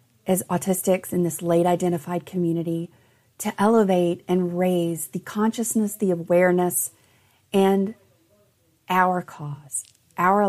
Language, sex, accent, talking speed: English, female, American, 110 wpm